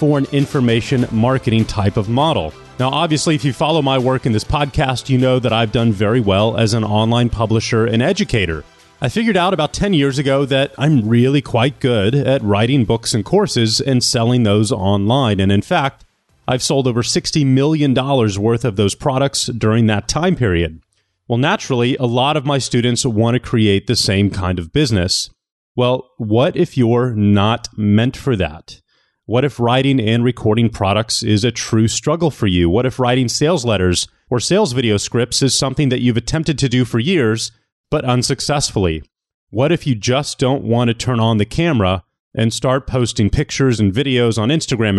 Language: English